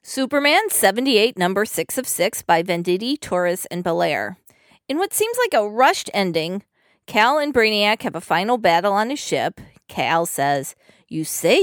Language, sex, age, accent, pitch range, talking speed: English, female, 40-59, American, 175-240 Hz, 165 wpm